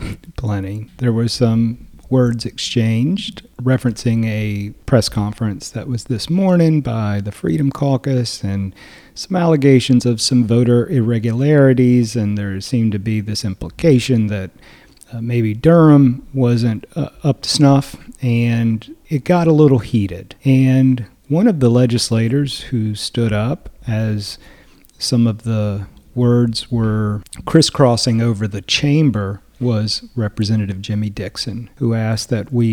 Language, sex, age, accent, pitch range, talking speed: English, male, 40-59, American, 105-130 Hz, 135 wpm